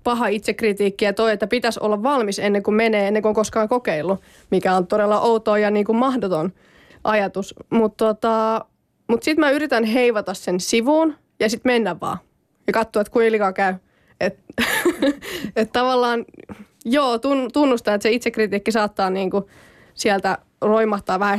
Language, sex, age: Finnish, female, 20-39